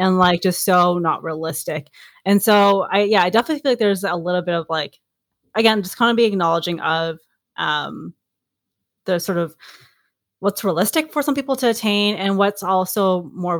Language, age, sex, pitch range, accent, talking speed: English, 20-39, female, 170-200 Hz, American, 185 wpm